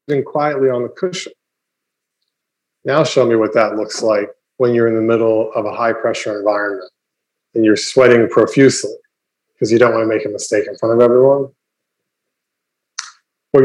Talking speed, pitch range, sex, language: 165 wpm, 110-135 Hz, male, English